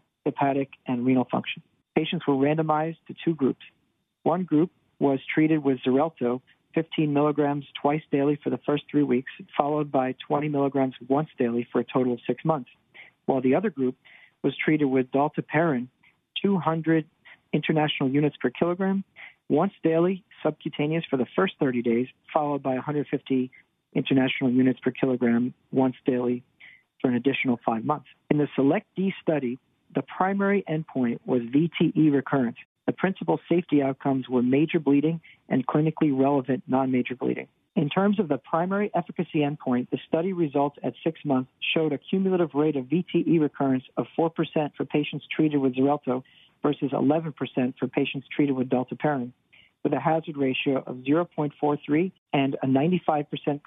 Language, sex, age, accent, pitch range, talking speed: English, male, 50-69, American, 130-160 Hz, 155 wpm